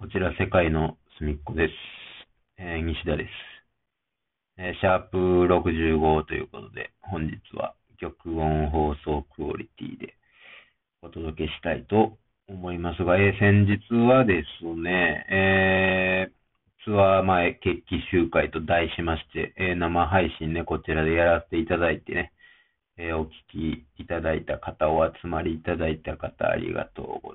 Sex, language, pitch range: male, Japanese, 80-95 Hz